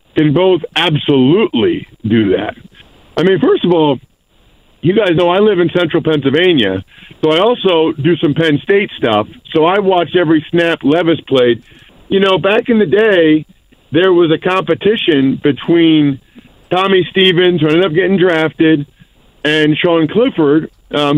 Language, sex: English, male